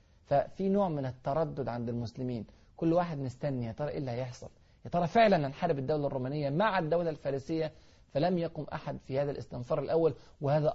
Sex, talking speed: male, 180 wpm